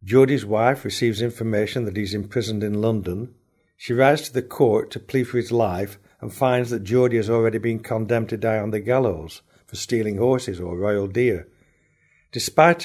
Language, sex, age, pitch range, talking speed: English, male, 60-79, 100-130 Hz, 185 wpm